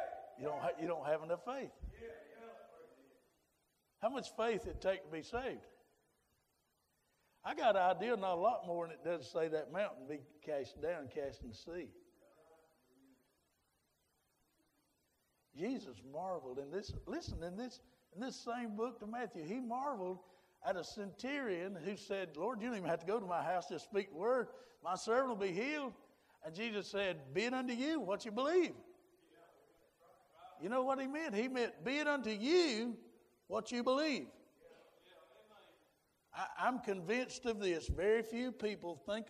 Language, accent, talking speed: English, American, 165 wpm